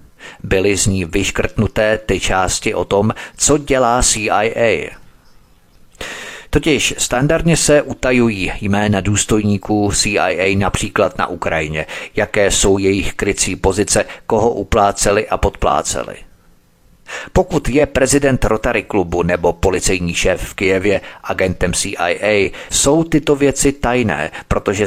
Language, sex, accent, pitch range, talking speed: Czech, male, native, 95-120 Hz, 115 wpm